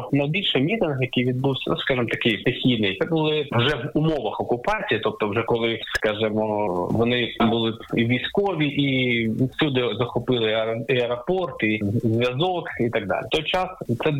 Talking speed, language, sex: 145 wpm, Ukrainian, male